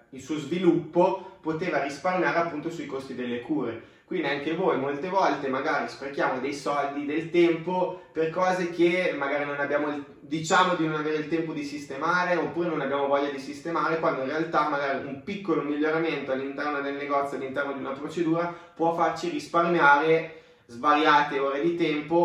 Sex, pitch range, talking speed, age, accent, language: male, 140-170 Hz, 165 wpm, 20-39, native, Italian